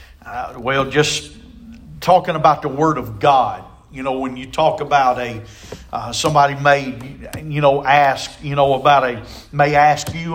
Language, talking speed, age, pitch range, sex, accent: English, 170 wpm, 50-69, 110-155 Hz, male, American